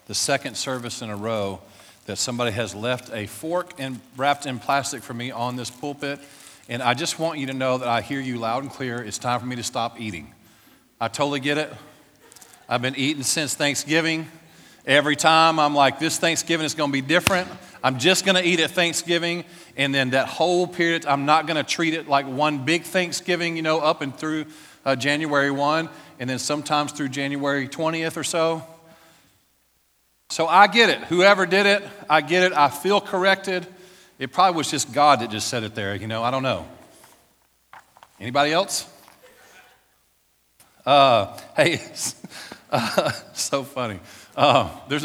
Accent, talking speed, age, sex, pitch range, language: American, 180 wpm, 40-59, male, 120-160 Hz, English